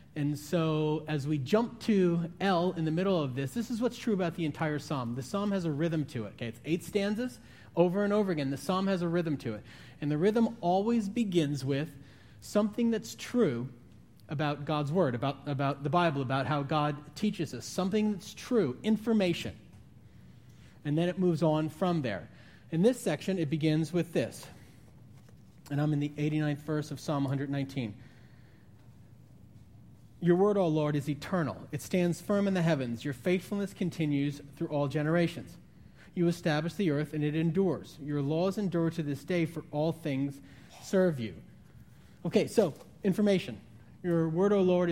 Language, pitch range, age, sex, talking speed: English, 140-180 Hz, 30-49, male, 180 wpm